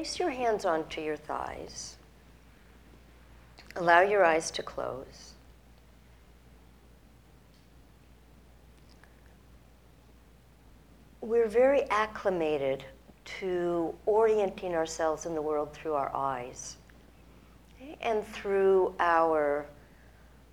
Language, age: English, 60-79